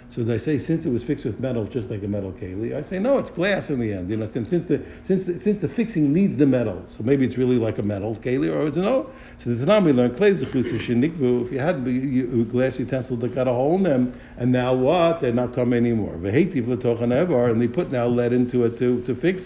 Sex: male